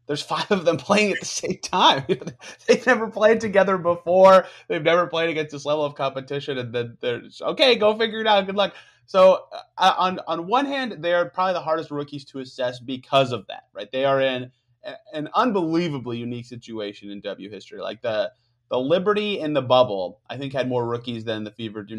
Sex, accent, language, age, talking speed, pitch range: male, American, English, 30-49, 215 wpm, 120-175 Hz